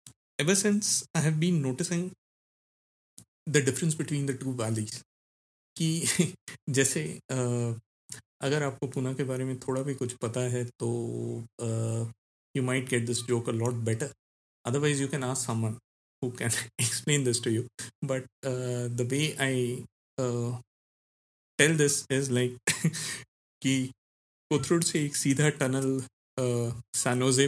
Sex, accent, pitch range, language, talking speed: male, native, 115-140 Hz, Hindi, 130 wpm